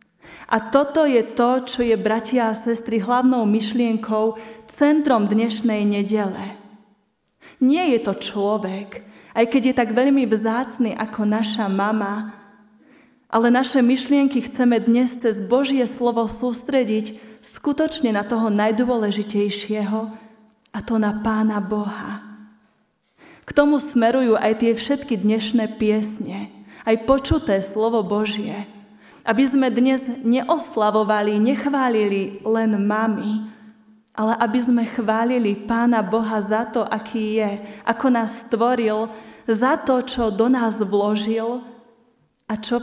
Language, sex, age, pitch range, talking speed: Slovak, female, 30-49, 210-240 Hz, 120 wpm